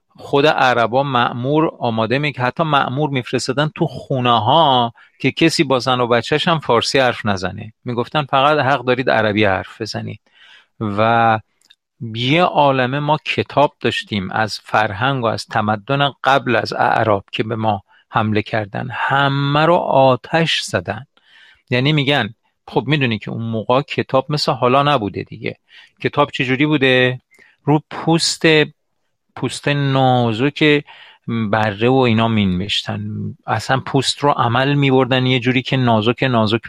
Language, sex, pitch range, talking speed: Persian, male, 110-145 Hz, 140 wpm